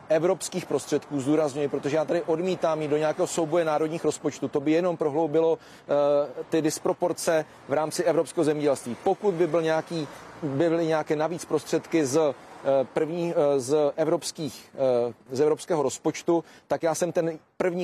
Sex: male